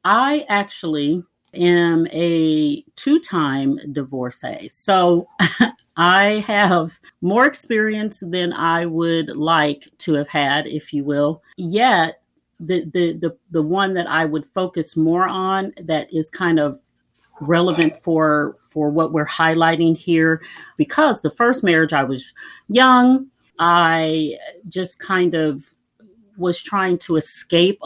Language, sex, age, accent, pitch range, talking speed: English, female, 40-59, American, 155-195 Hz, 125 wpm